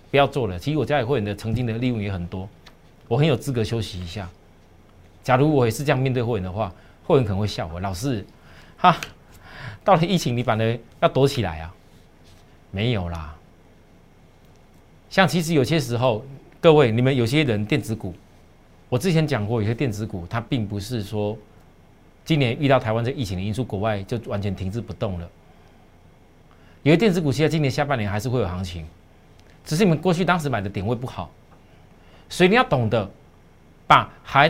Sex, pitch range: male, 95-135 Hz